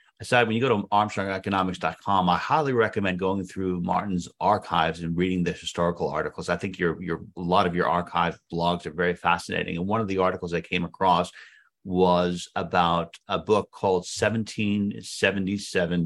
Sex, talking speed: male, 170 wpm